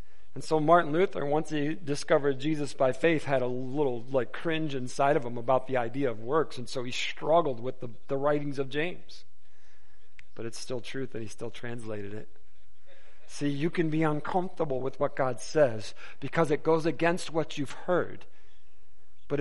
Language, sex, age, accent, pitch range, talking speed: English, male, 50-69, American, 130-175 Hz, 180 wpm